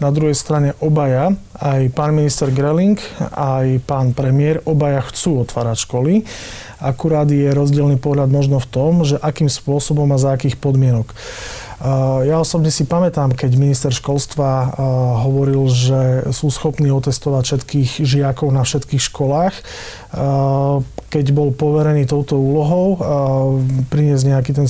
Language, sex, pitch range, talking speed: Slovak, male, 130-145 Hz, 130 wpm